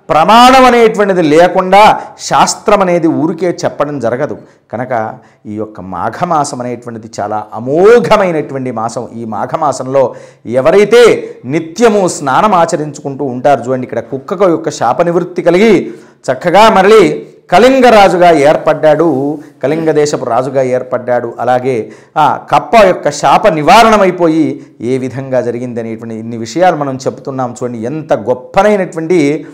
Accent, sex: native, male